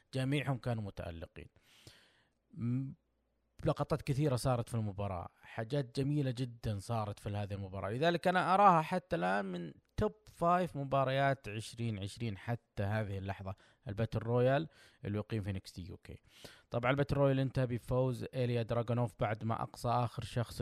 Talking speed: 135 wpm